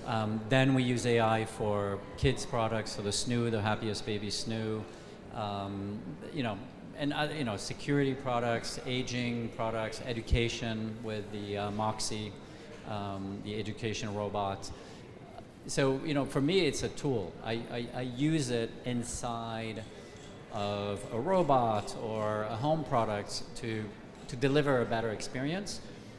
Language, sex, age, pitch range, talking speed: English, male, 40-59, 110-130 Hz, 140 wpm